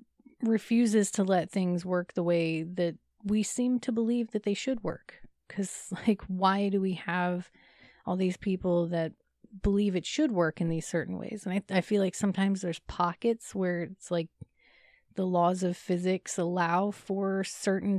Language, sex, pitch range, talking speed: English, female, 175-205 Hz, 175 wpm